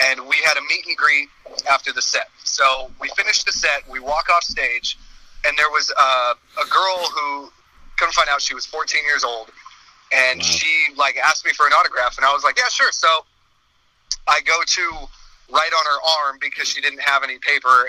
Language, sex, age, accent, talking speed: English, male, 30-49, American, 210 wpm